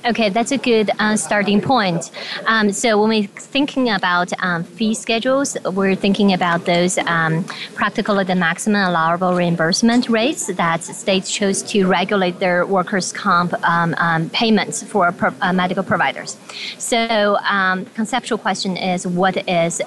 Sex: female